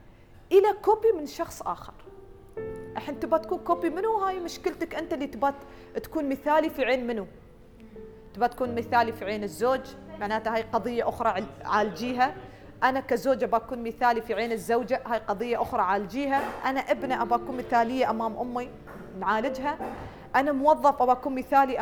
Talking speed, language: 145 wpm, Arabic